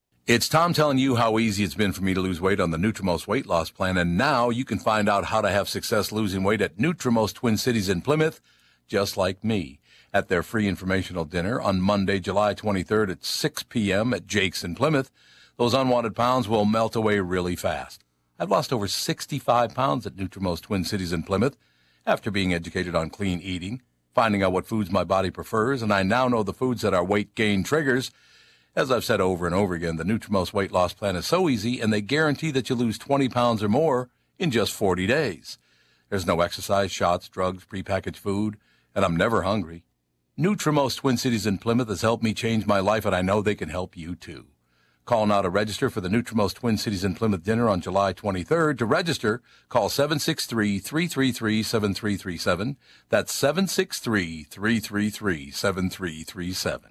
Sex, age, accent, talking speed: male, 60-79, American, 190 wpm